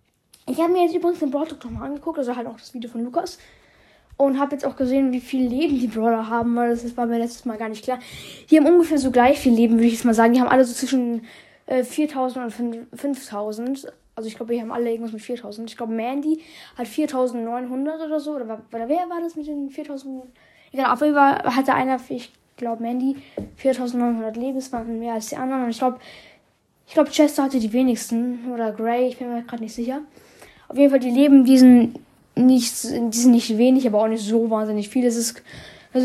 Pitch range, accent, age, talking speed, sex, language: 235-285 Hz, German, 10-29, 225 wpm, female, German